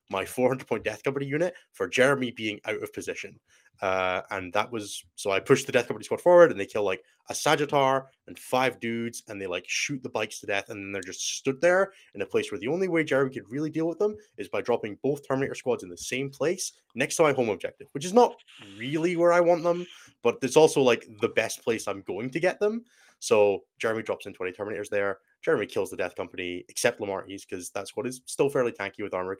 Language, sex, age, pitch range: English, male, 20-39, 95-160 Hz